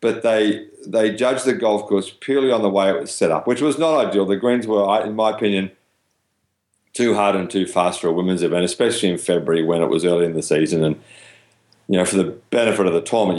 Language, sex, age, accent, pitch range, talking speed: English, male, 40-59, Australian, 90-105 Hz, 240 wpm